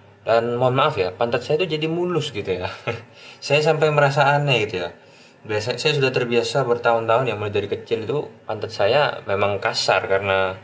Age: 20-39